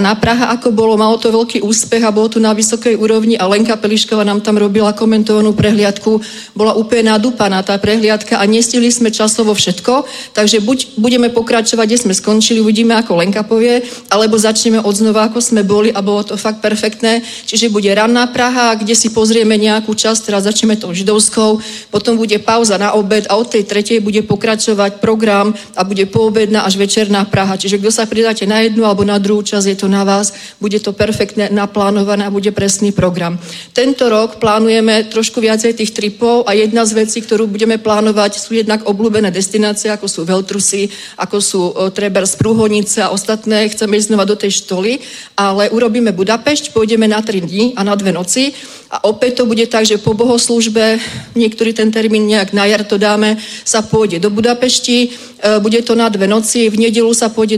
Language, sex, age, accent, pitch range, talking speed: Czech, female, 40-59, native, 205-225 Hz, 190 wpm